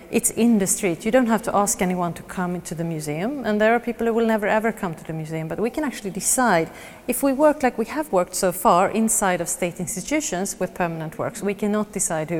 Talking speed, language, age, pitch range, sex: 255 wpm, Danish, 30-49, 180-225 Hz, female